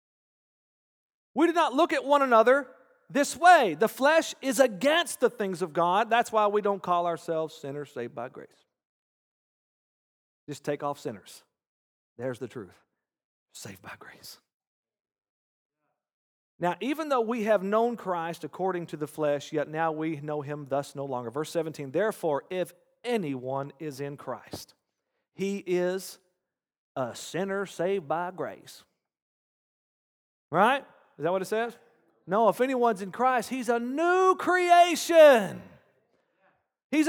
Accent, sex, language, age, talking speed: American, male, English, 40-59, 140 wpm